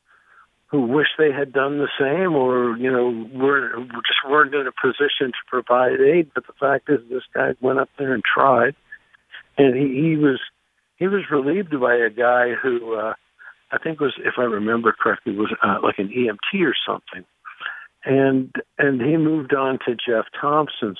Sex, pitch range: male, 125-150 Hz